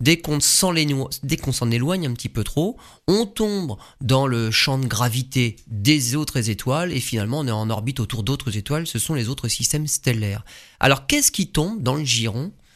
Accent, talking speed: French, 200 wpm